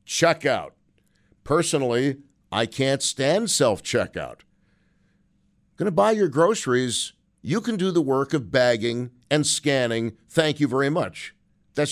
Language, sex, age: English, male, 50-69